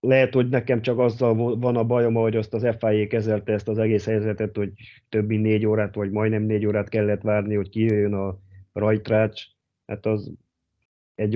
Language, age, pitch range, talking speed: Hungarian, 30-49, 105-115 Hz, 180 wpm